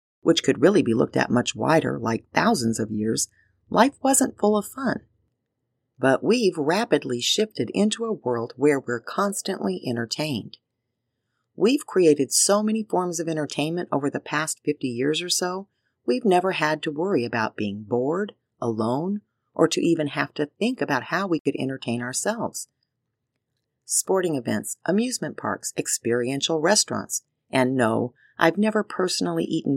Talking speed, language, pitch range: 150 wpm, English, 125-185 Hz